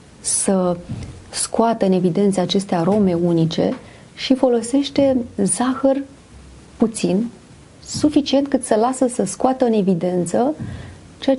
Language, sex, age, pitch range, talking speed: Romanian, female, 30-49, 195-245 Hz, 105 wpm